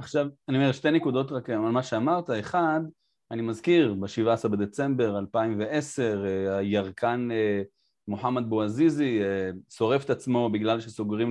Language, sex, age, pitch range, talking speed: Hebrew, male, 30-49, 110-150 Hz, 120 wpm